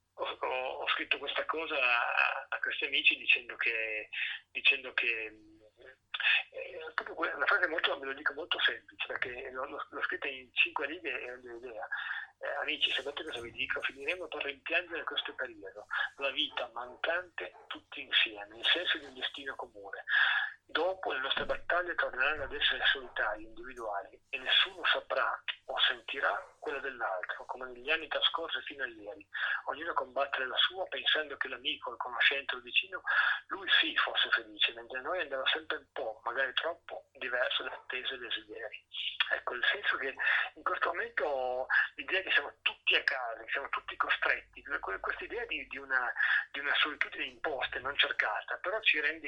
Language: Italian